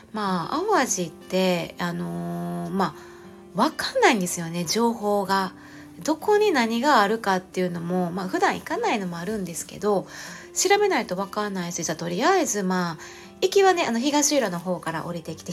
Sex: female